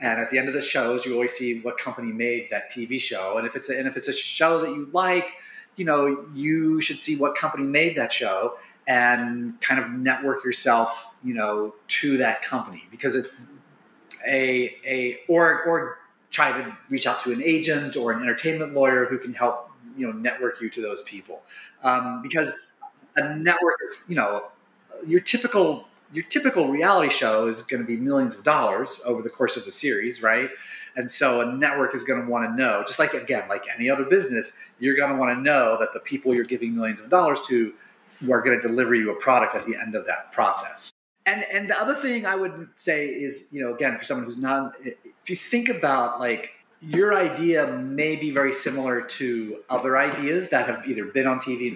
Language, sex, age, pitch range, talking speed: English, male, 30-49, 125-165 Hz, 215 wpm